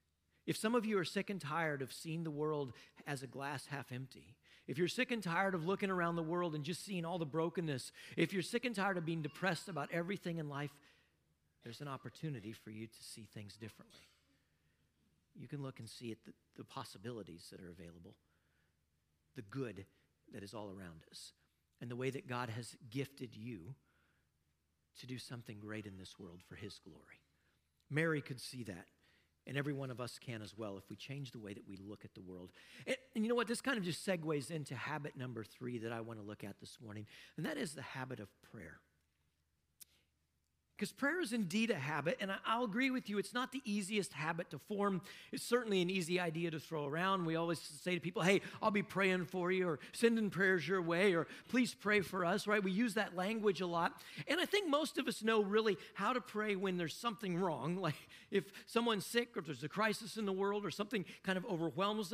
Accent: American